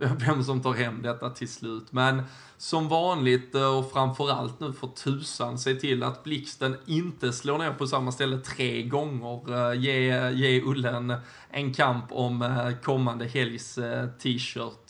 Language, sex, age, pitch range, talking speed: Swedish, male, 20-39, 125-140 Hz, 150 wpm